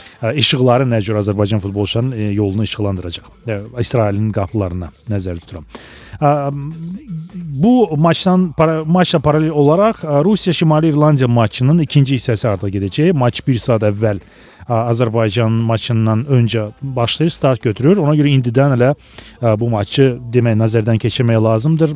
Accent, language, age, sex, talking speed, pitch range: Turkish, Russian, 40-59, male, 120 wpm, 110-145 Hz